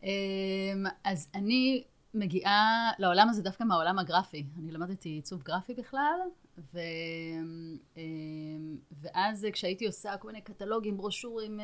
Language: Hebrew